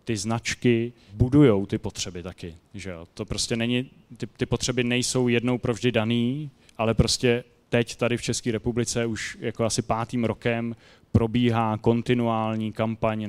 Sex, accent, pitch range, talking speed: male, native, 110-125 Hz, 150 wpm